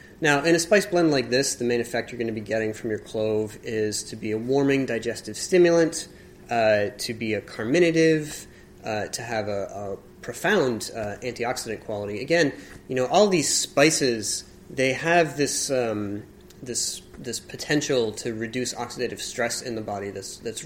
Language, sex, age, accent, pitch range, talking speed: English, male, 30-49, American, 105-125 Hz, 175 wpm